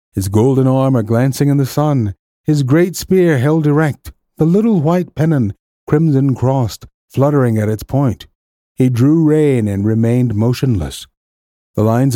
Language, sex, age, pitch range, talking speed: English, male, 50-69, 110-165 Hz, 145 wpm